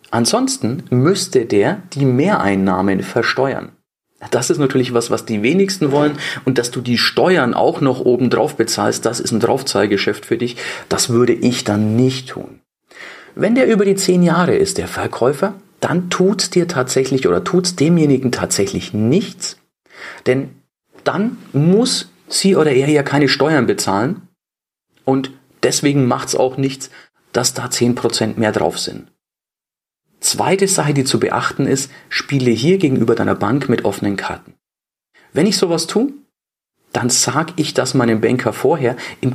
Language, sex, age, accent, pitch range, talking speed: German, male, 40-59, German, 125-165 Hz, 155 wpm